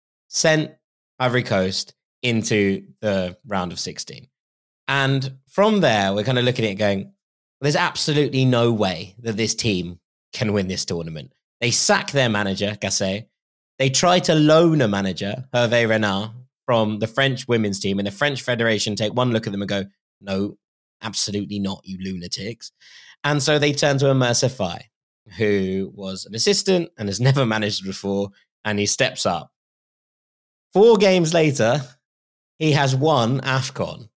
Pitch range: 105-150 Hz